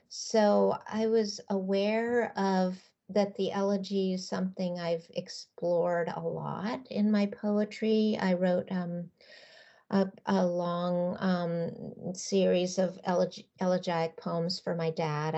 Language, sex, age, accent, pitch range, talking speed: English, female, 50-69, American, 165-200 Hz, 120 wpm